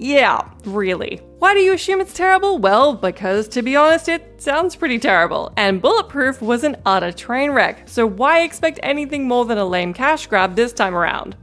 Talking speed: 195 wpm